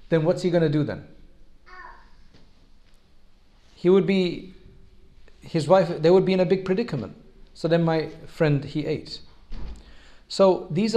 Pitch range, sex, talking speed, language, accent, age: 145-185 Hz, male, 150 wpm, English, South African, 40-59